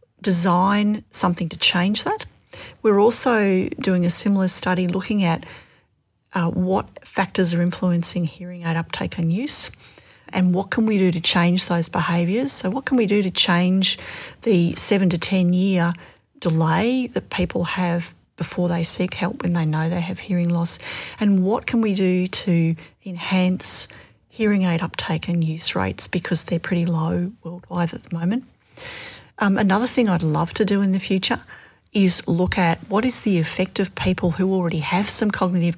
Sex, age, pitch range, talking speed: female, 40-59, 170-195 Hz, 175 wpm